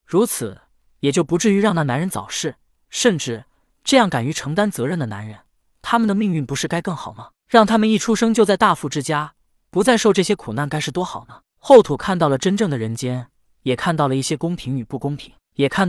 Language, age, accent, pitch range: Chinese, 20-39, native, 135-190 Hz